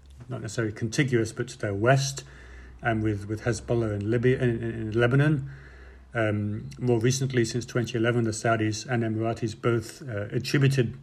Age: 50-69